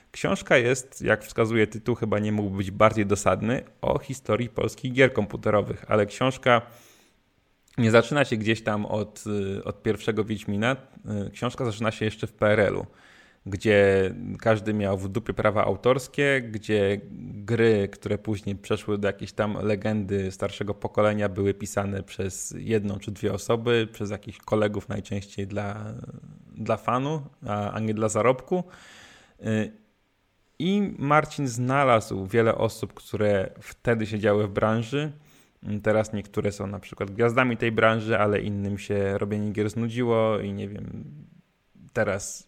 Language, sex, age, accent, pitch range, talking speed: Polish, male, 20-39, native, 105-120 Hz, 135 wpm